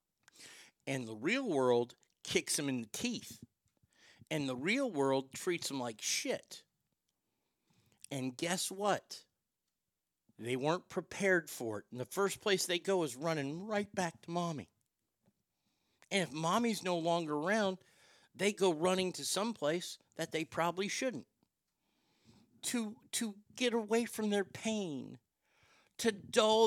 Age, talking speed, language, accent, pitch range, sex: 50-69, 140 wpm, English, American, 145-195 Hz, male